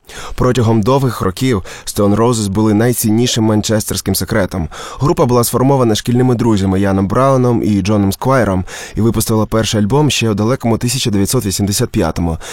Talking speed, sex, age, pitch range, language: 130 wpm, male, 20-39, 100-120 Hz, Ukrainian